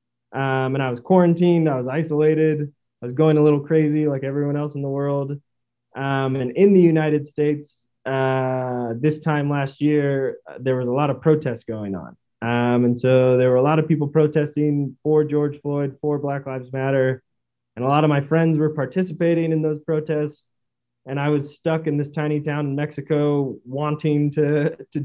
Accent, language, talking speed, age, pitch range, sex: American, English, 190 wpm, 20-39, 130-155 Hz, male